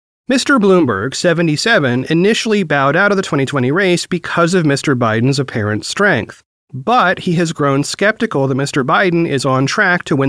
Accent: American